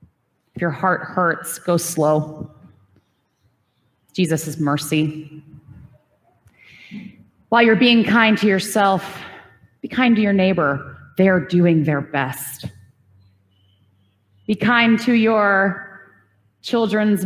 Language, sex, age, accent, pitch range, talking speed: English, female, 30-49, American, 145-195 Hz, 105 wpm